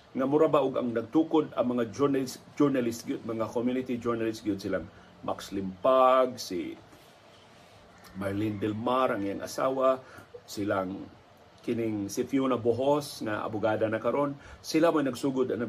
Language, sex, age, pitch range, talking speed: Filipino, male, 40-59, 110-140 Hz, 140 wpm